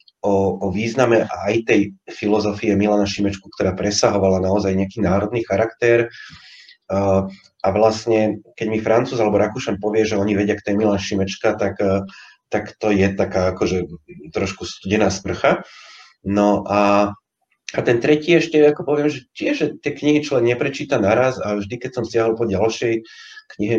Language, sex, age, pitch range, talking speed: Slovak, male, 30-49, 95-110 Hz, 155 wpm